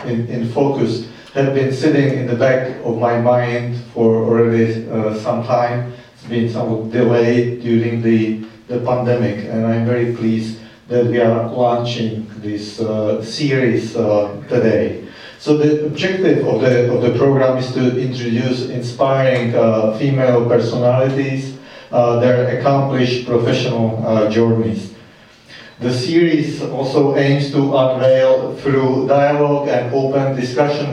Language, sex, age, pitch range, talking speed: English, male, 50-69, 115-135 Hz, 130 wpm